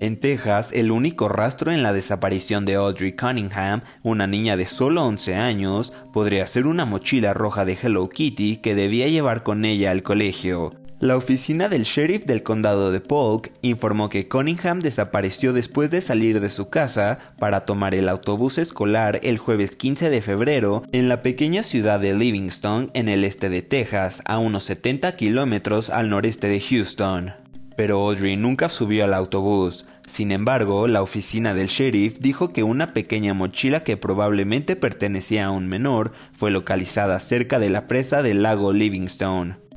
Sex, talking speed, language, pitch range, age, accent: male, 165 wpm, Spanish, 100-125 Hz, 20-39, Mexican